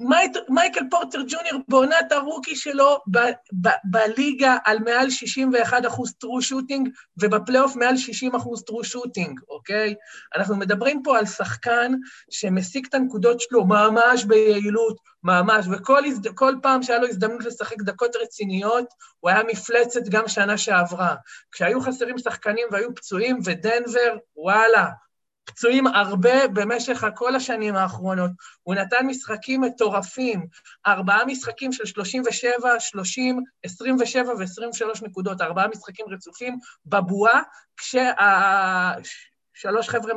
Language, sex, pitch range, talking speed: Hebrew, male, 200-250 Hz, 125 wpm